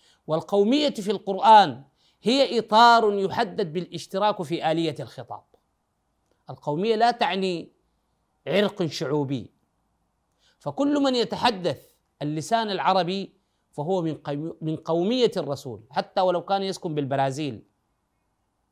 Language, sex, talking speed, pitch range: Arabic, male, 95 wpm, 150-210 Hz